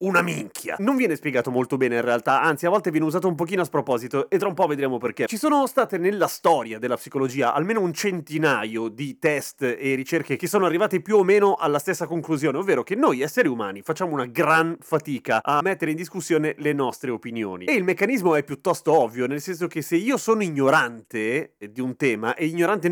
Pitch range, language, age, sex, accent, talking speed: 130-170 Hz, Italian, 30-49, male, native, 210 wpm